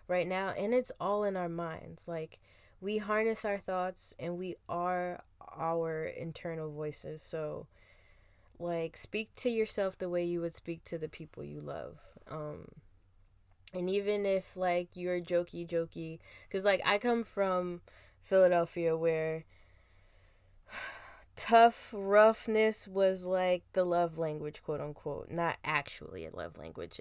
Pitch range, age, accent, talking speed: 160-200 Hz, 10-29, American, 140 wpm